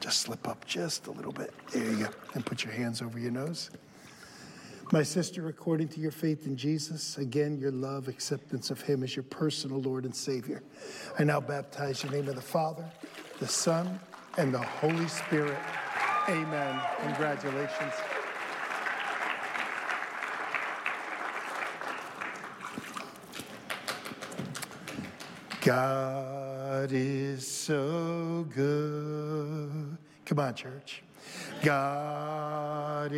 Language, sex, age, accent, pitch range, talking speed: English, male, 50-69, American, 140-165 Hz, 110 wpm